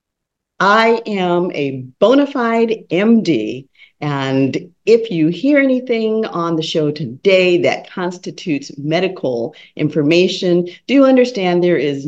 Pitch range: 140-205 Hz